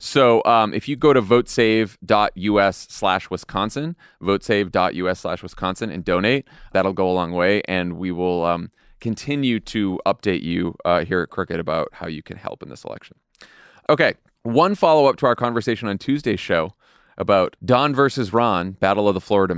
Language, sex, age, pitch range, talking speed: English, male, 30-49, 100-130 Hz, 175 wpm